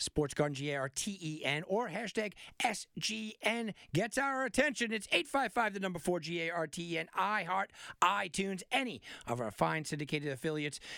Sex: male